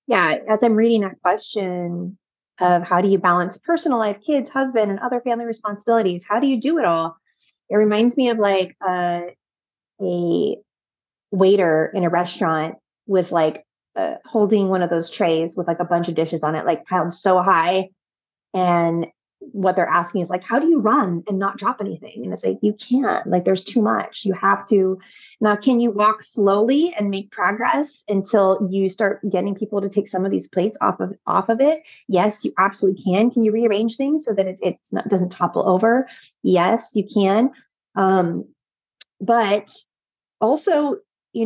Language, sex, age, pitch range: English, female, 30-49, 185-235 Hz